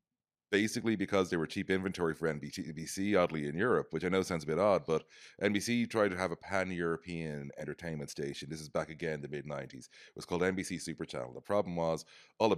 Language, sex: English, male